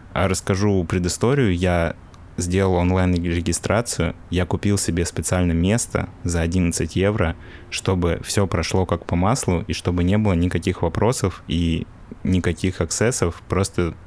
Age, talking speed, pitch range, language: 20-39, 130 wpm, 85-105 Hz, Russian